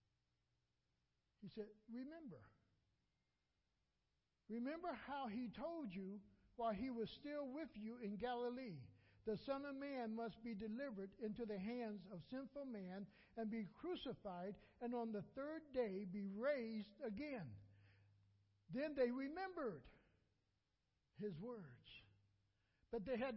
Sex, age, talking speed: male, 60-79, 125 wpm